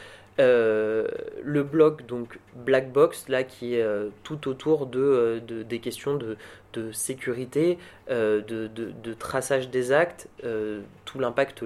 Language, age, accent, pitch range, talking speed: French, 20-39, French, 110-145 Hz, 150 wpm